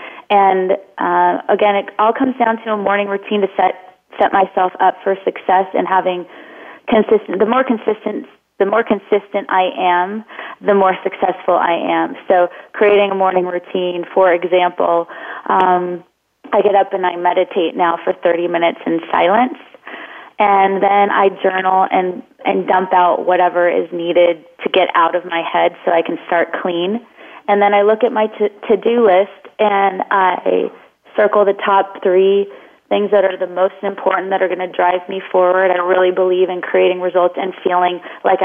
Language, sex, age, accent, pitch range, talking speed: English, female, 30-49, American, 180-200 Hz, 175 wpm